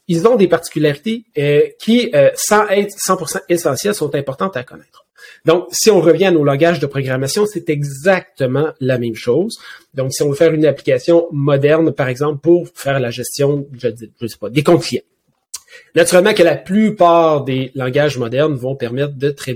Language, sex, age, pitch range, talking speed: French, male, 30-49, 140-175 Hz, 185 wpm